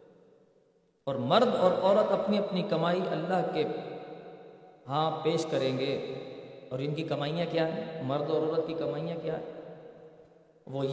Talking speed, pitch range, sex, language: 150 wpm, 155-205 Hz, male, Urdu